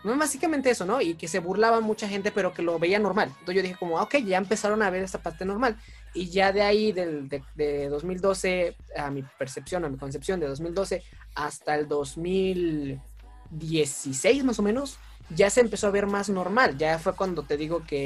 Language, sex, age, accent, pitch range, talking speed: Spanish, male, 20-39, Mexican, 150-190 Hz, 210 wpm